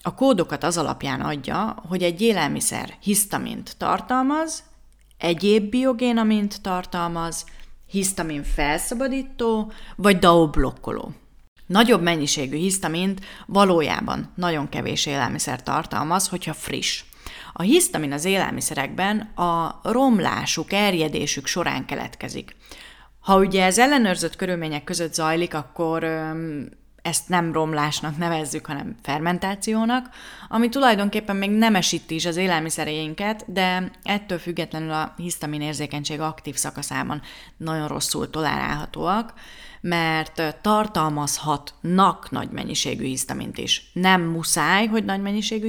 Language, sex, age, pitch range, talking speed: Hungarian, female, 30-49, 160-220 Hz, 105 wpm